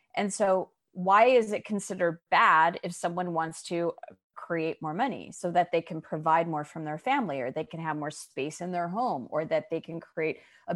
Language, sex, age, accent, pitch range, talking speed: English, female, 30-49, American, 165-220 Hz, 210 wpm